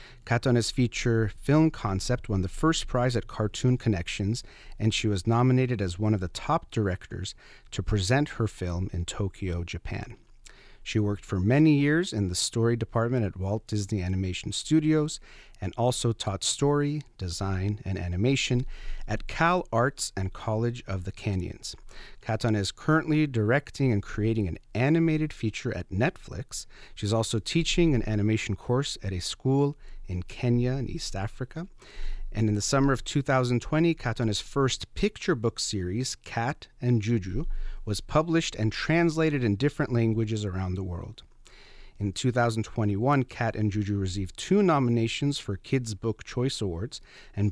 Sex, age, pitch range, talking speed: male, 40-59, 100-130 Hz, 150 wpm